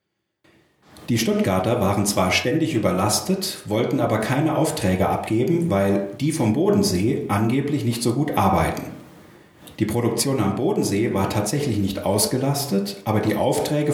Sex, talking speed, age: male, 135 wpm, 50-69